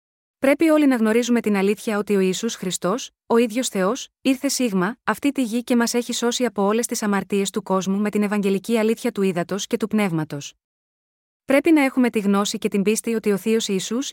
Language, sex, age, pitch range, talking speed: Greek, female, 20-39, 205-245 Hz, 210 wpm